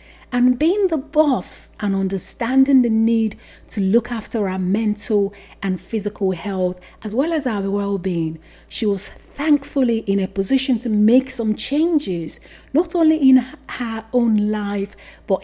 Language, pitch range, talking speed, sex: English, 190-255 Hz, 150 wpm, female